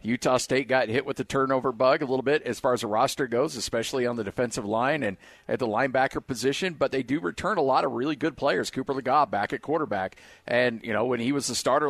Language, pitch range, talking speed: English, 125-150 Hz, 250 wpm